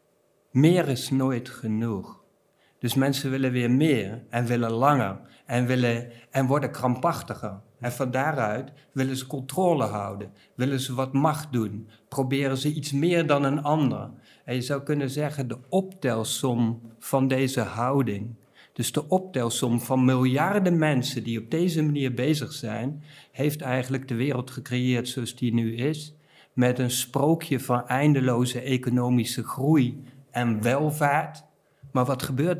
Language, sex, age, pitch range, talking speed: Dutch, male, 50-69, 120-145 Hz, 145 wpm